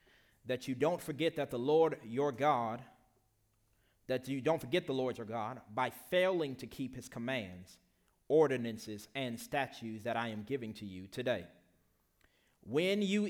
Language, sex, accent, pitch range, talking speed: English, male, American, 115-150 Hz, 160 wpm